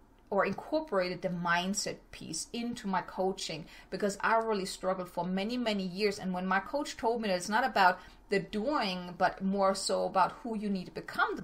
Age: 30-49